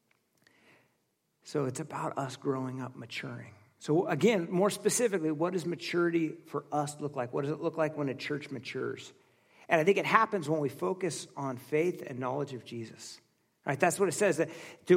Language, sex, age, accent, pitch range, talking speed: English, male, 50-69, American, 155-195 Hz, 190 wpm